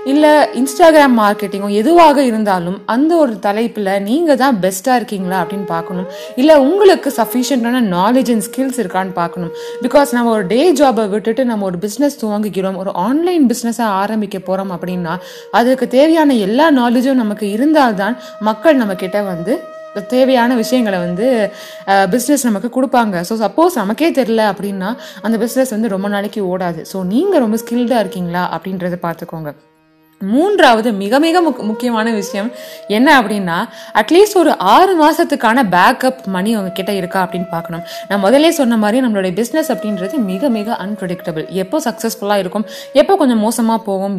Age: 20-39